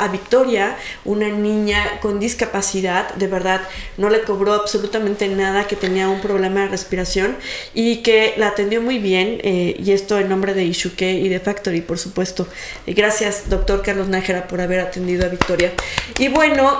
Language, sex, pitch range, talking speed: Spanish, female, 195-240 Hz, 170 wpm